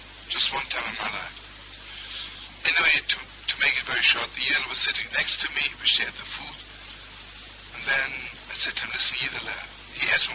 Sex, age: male, 60-79